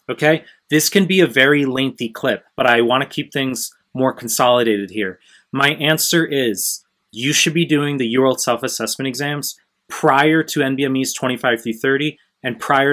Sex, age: male, 30-49